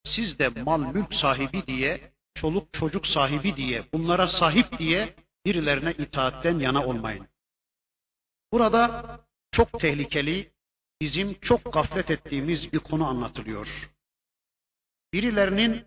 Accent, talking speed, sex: native, 105 wpm, male